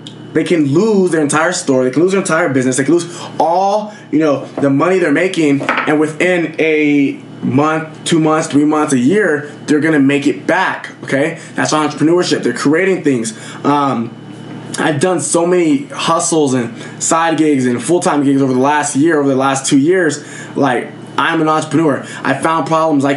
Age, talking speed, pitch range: 20-39, 185 wpm, 140-165 Hz